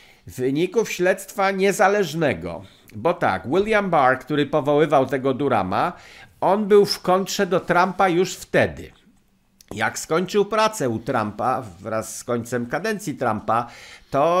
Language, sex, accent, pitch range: Polish, male, native, 135-200 Hz